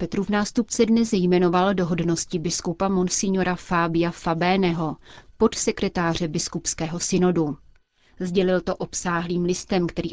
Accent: native